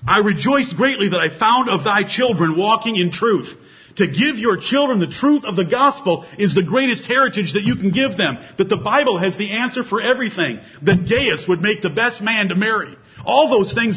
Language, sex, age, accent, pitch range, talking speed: English, male, 50-69, American, 160-215 Hz, 215 wpm